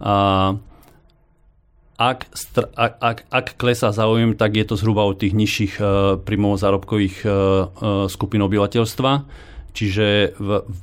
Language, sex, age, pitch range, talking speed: Slovak, male, 40-59, 100-110 Hz, 105 wpm